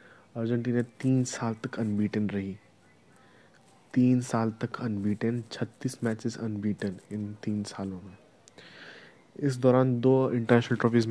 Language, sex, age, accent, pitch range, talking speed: Hindi, male, 20-39, native, 110-125 Hz, 120 wpm